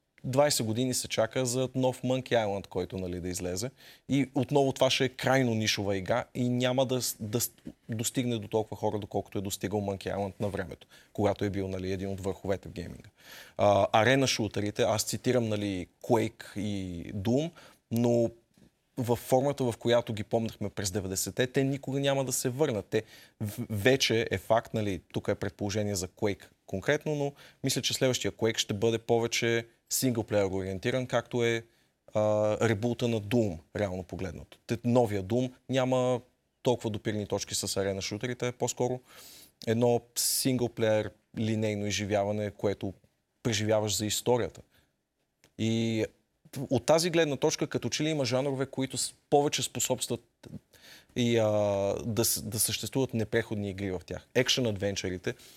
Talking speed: 150 wpm